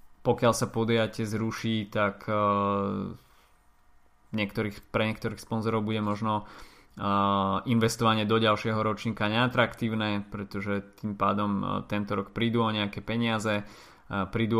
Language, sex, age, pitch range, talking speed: Slovak, male, 20-39, 100-110 Hz, 105 wpm